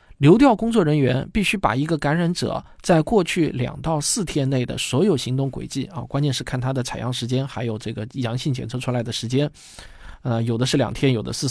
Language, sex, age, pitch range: Chinese, male, 20-39, 120-155 Hz